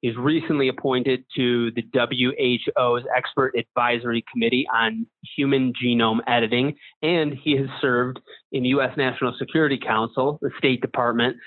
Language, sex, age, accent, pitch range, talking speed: English, male, 30-49, American, 120-140 Hz, 130 wpm